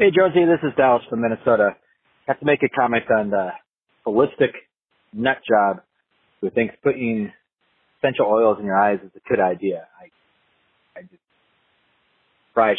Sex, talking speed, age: male, 155 wpm, 30-49